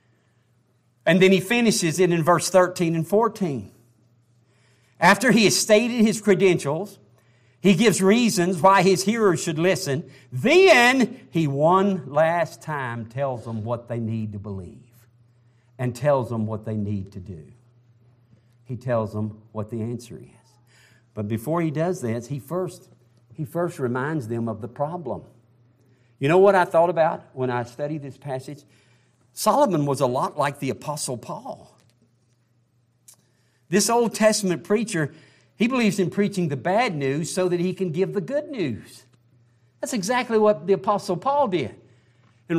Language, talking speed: English, 155 wpm